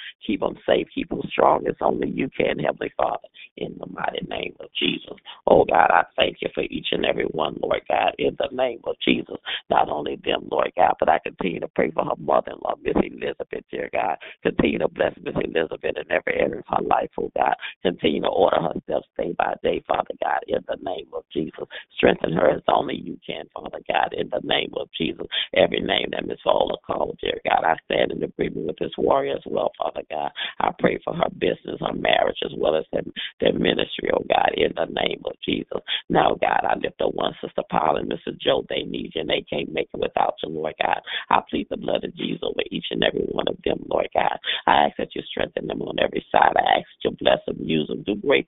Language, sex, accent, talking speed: English, male, American, 235 wpm